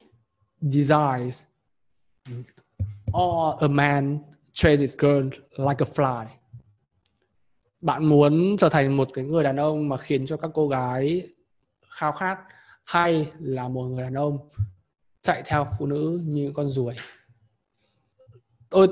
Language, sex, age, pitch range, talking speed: Vietnamese, male, 20-39, 130-180 Hz, 125 wpm